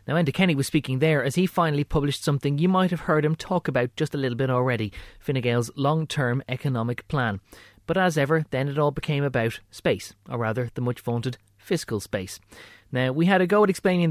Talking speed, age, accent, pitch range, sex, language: 210 wpm, 20-39, Irish, 105-140 Hz, male, English